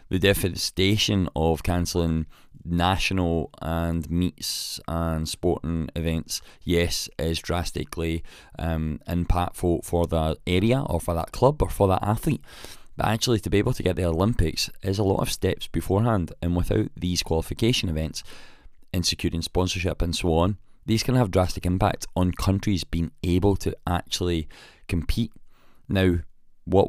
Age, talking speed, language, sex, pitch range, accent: 20-39, 145 wpm, English, male, 85-100 Hz, British